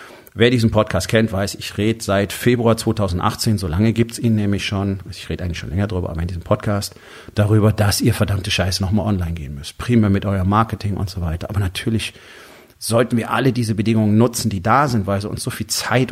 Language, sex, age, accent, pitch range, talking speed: German, male, 40-59, German, 100-120 Hz, 225 wpm